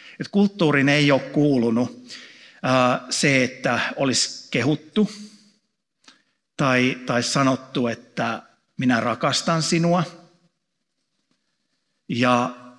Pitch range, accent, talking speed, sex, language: 125-155 Hz, native, 75 wpm, male, Finnish